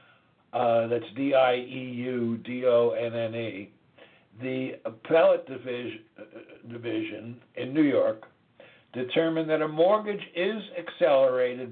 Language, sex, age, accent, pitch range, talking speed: English, male, 60-79, American, 120-165 Hz, 130 wpm